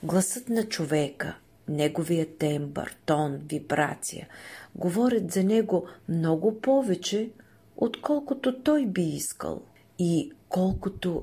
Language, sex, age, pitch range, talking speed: Bulgarian, female, 40-59, 150-200 Hz, 95 wpm